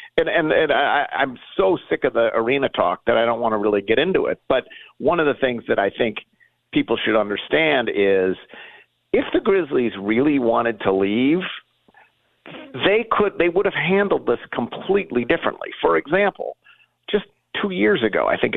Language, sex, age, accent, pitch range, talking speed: English, male, 50-69, American, 105-170 Hz, 180 wpm